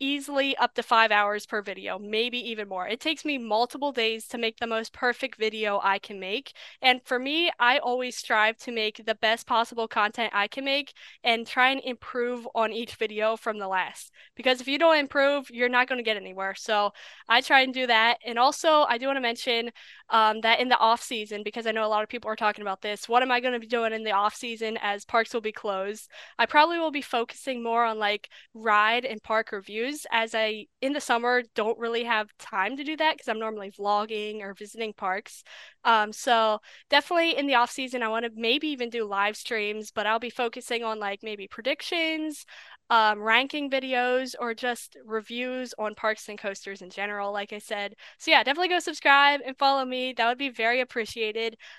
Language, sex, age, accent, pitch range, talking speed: English, female, 10-29, American, 215-255 Hz, 215 wpm